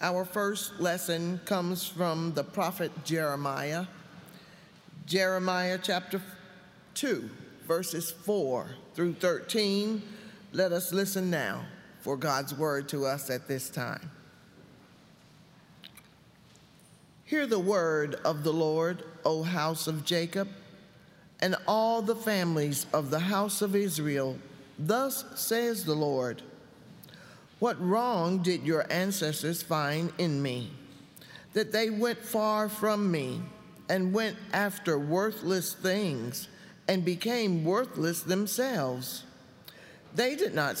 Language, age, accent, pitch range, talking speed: English, 50-69, American, 155-200 Hz, 110 wpm